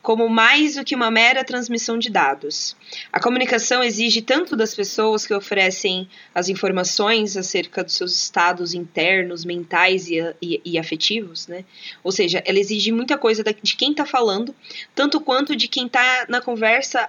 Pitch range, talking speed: 200-255 Hz, 165 wpm